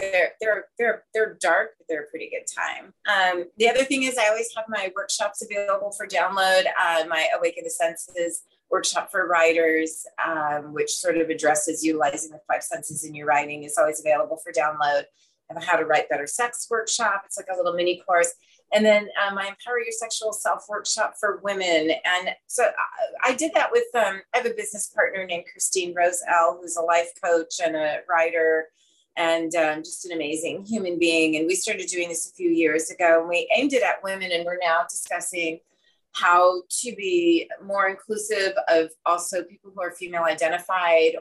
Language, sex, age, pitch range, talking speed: English, female, 30-49, 160-210 Hz, 195 wpm